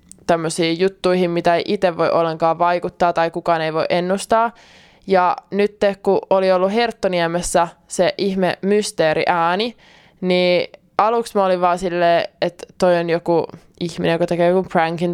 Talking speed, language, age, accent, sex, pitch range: 145 wpm, Finnish, 20-39, native, male, 175-200 Hz